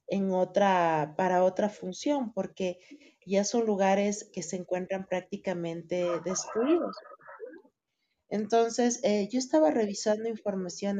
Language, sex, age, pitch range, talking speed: Spanish, female, 40-59, 180-230 Hz, 110 wpm